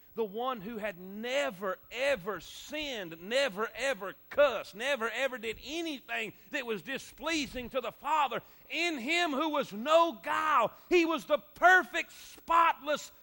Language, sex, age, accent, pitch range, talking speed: English, male, 40-59, American, 255-330 Hz, 140 wpm